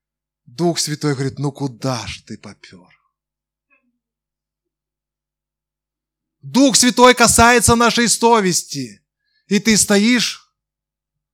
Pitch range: 135-215 Hz